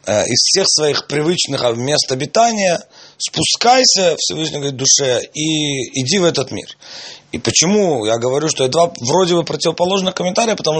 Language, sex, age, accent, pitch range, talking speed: Russian, male, 30-49, native, 120-155 Hz, 150 wpm